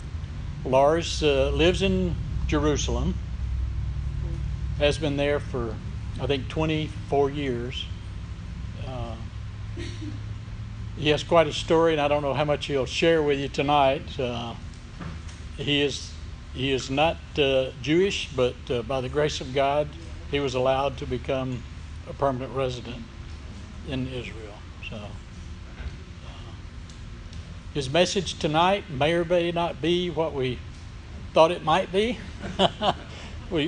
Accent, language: American, English